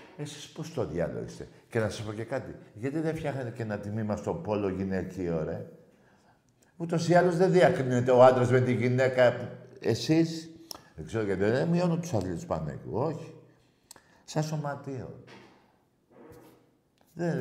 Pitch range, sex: 110-155 Hz, male